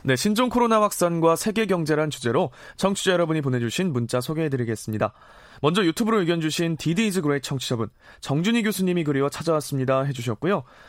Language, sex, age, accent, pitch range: Korean, male, 20-39, native, 135-190 Hz